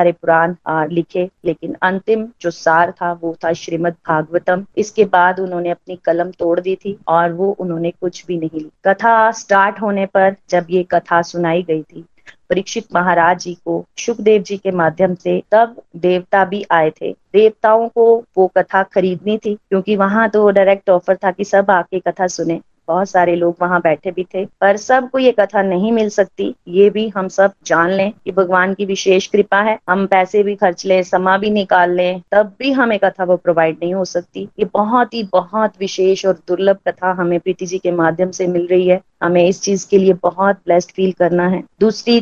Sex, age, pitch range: female, 30-49, 175-200 Hz